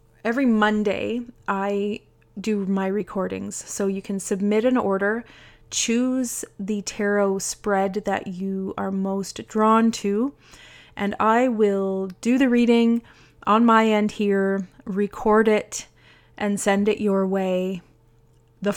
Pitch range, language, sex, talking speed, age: 190-215 Hz, English, female, 130 wpm, 30-49